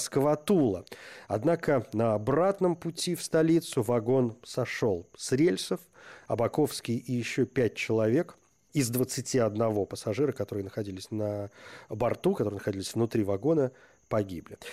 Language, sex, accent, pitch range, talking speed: Russian, male, native, 115-160 Hz, 115 wpm